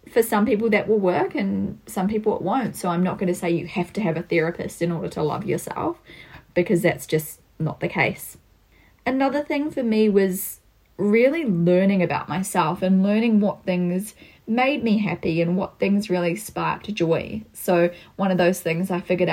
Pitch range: 170-210 Hz